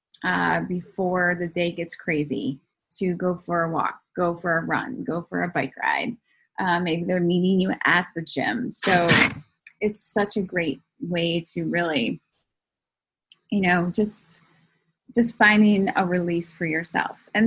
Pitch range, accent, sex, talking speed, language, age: 175-215 Hz, American, female, 160 wpm, English, 20-39